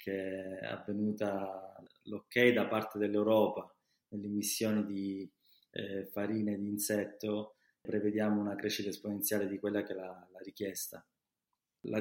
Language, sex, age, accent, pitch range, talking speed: Italian, male, 20-39, native, 100-105 Hz, 125 wpm